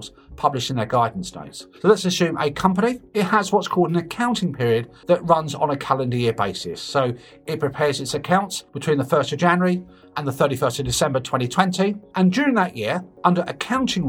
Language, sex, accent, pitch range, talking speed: English, male, British, 140-185 Hz, 195 wpm